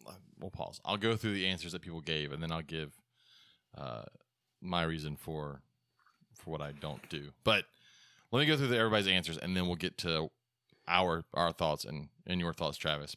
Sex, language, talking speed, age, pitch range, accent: male, English, 200 wpm, 30-49, 85-105 Hz, American